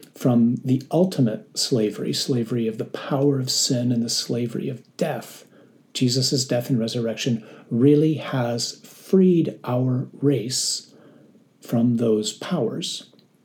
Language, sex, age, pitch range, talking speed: English, male, 40-59, 115-145 Hz, 120 wpm